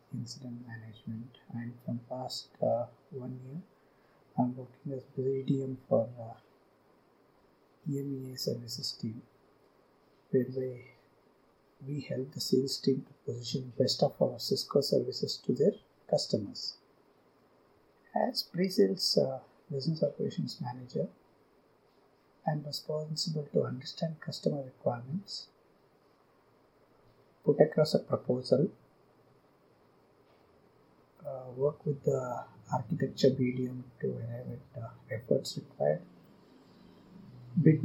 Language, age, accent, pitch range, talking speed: English, 50-69, Indian, 125-145 Hz, 105 wpm